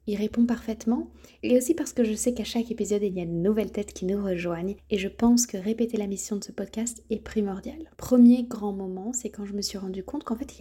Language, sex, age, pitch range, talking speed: French, female, 20-39, 200-235 Hz, 260 wpm